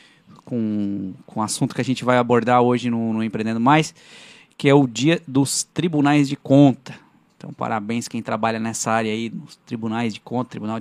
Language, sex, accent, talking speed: Portuguese, male, Brazilian, 190 wpm